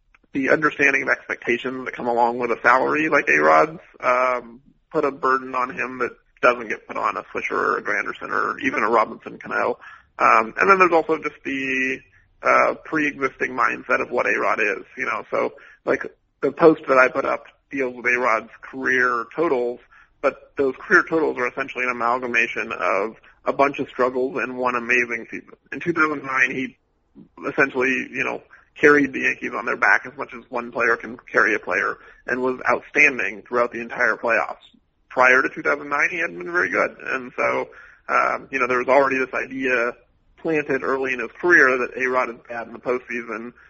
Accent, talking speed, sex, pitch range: American, 190 wpm, male, 120-135 Hz